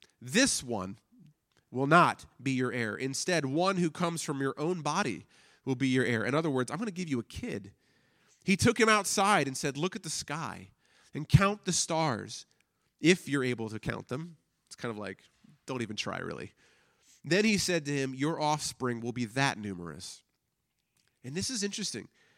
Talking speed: 195 wpm